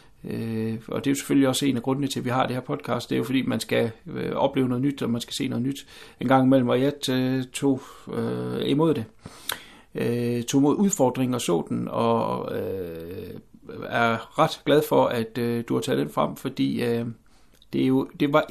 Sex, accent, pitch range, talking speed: male, native, 110-130 Hz, 225 wpm